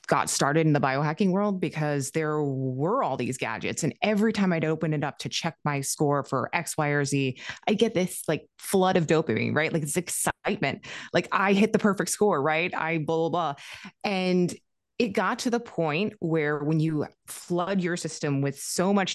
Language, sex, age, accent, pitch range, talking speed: English, female, 20-39, American, 155-210 Hz, 205 wpm